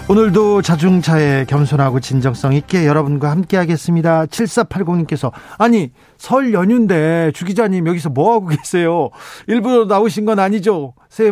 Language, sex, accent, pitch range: Korean, male, native, 140-175 Hz